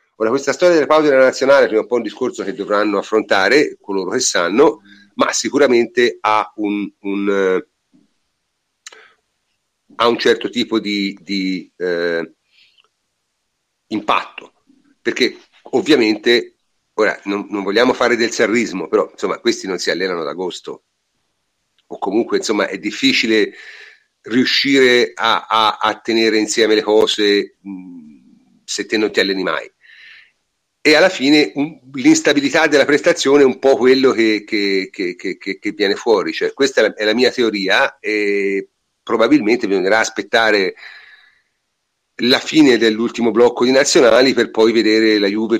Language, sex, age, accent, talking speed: Italian, male, 40-59, native, 145 wpm